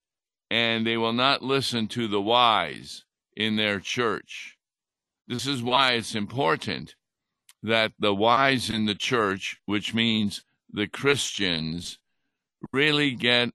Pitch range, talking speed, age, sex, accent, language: 105-125 Hz, 125 wpm, 60-79, male, American, English